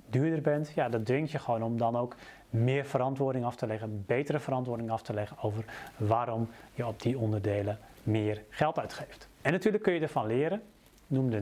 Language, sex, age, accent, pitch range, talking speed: Dutch, male, 30-49, Dutch, 115-145 Hz, 190 wpm